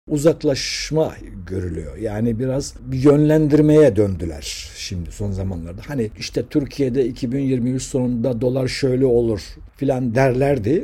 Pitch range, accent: 105-155 Hz, native